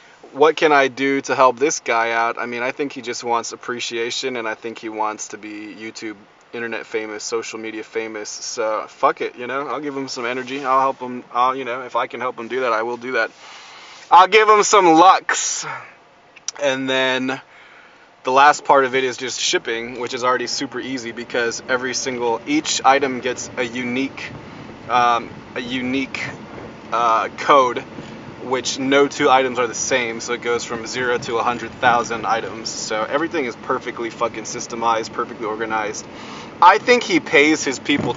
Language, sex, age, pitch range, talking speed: English, male, 20-39, 115-140 Hz, 190 wpm